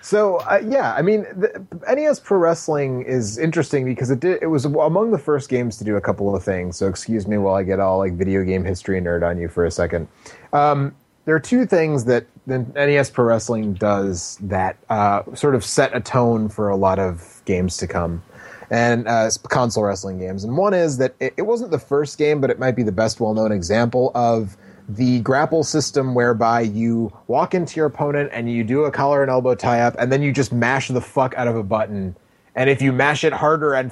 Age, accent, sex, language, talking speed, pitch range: 30-49, American, male, English, 225 wpm, 105-135 Hz